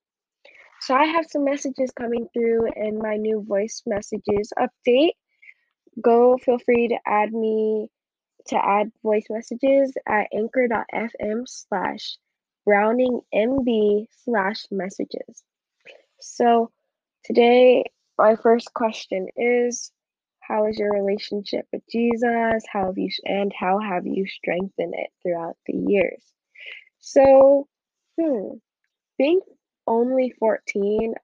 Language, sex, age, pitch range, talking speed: English, female, 10-29, 200-250 Hz, 115 wpm